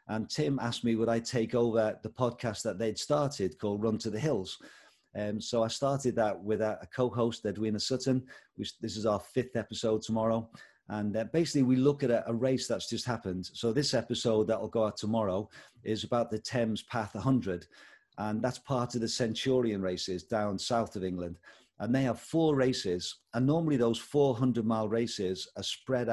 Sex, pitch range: male, 110-125 Hz